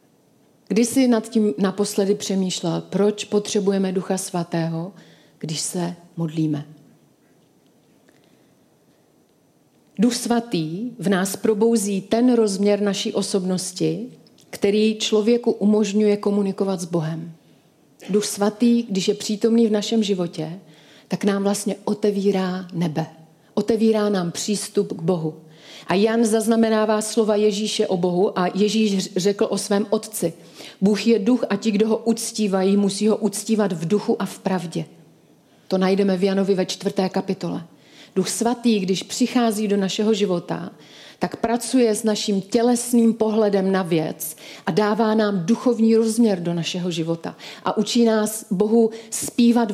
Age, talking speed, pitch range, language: 40-59, 135 wpm, 185-220 Hz, Czech